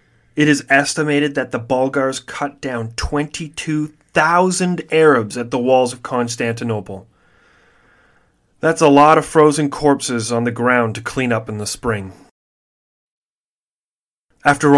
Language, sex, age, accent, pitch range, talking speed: English, male, 30-49, American, 120-155 Hz, 125 wpm